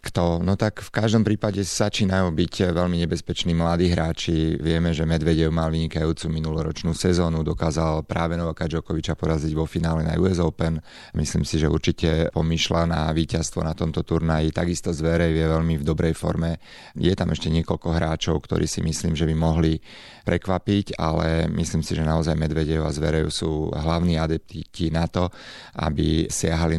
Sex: male